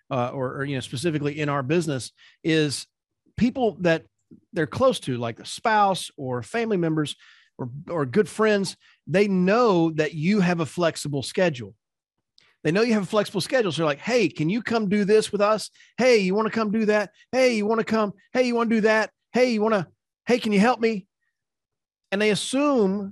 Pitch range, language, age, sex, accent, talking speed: 155-220 Hz, English, 40-59, male, American, 215 wpm